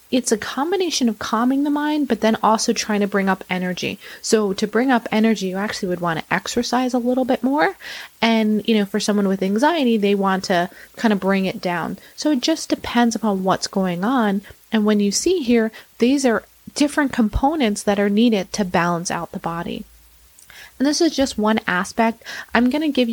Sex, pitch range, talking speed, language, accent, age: female, 190-230 Hz, 210 wpm, English, American, 30-49